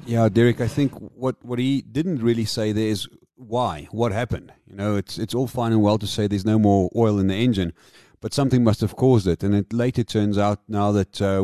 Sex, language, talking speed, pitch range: male, English, 240 wpm, 100-125 Hz